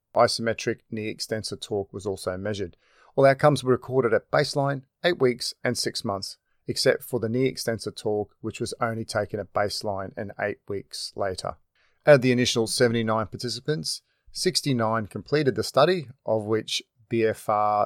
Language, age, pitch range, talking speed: English, 40-59, 110-125 Hz, 160 wpm